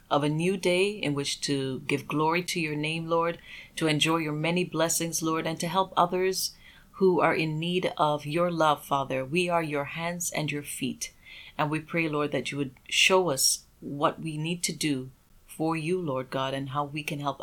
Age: 30-49